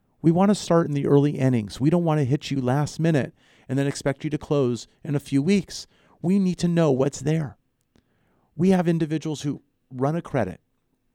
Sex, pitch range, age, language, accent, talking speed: male, 125-175 Hz, 40-59, English, American, 210 wpm